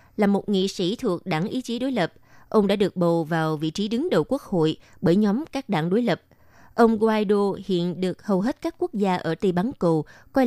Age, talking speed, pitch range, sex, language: 20-39, 235 wpm, 170-225 Hz, female, Vietnamese